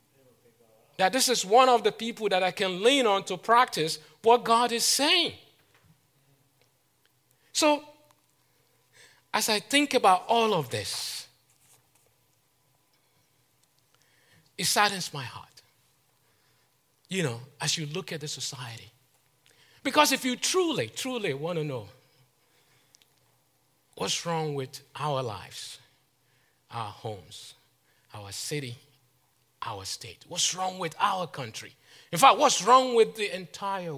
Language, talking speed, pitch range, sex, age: English, 120 wpm, 125-185 Hz, male, 50-69